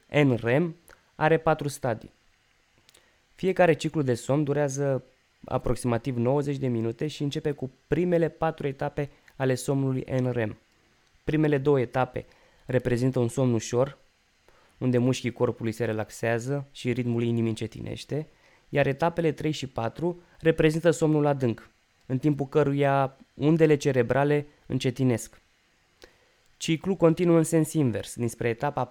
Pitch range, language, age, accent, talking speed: 120-150 Hz, Romanian, 20-39, native, 120 wpm